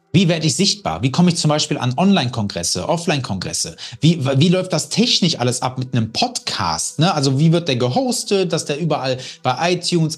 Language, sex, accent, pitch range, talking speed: German, male, German, 130-180 Hz, 190 wpm